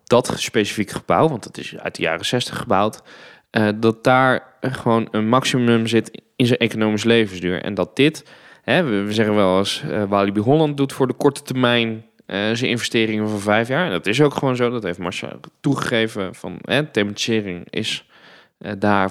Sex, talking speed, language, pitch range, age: male, 170 wpm, Dutch, 110-135 Hz, 20-39